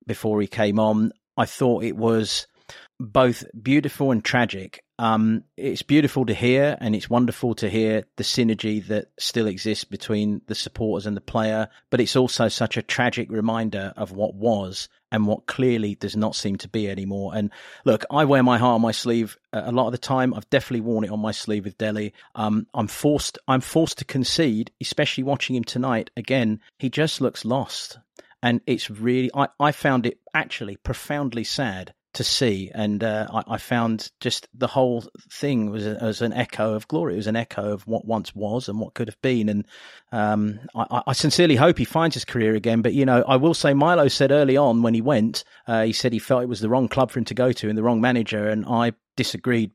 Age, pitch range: 40-59, 110-125 Hz